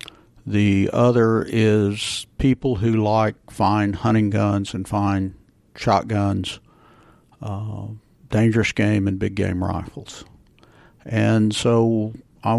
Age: 50-69